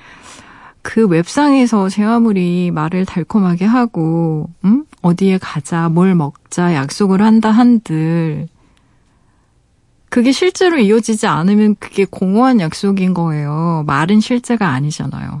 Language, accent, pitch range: Korean, native, 175-225 Hz